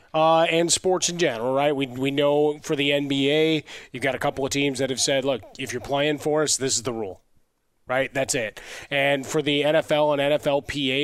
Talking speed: 220 wpm